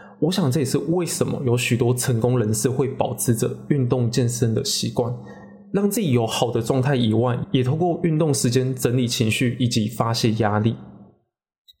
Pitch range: 120-160 Hz